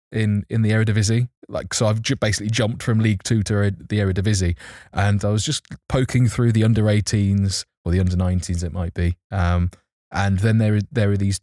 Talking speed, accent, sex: 185 wpm, British, male